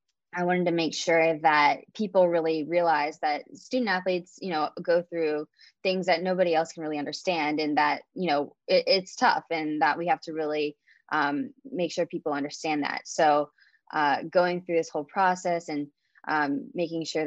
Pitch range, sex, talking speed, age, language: 150-175 Hz, female, 185 wpm, 10-29, English